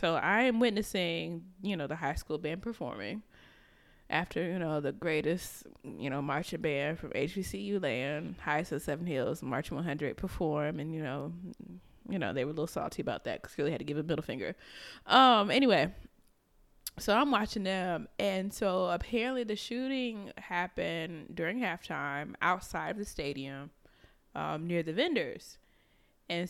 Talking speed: 170 wpm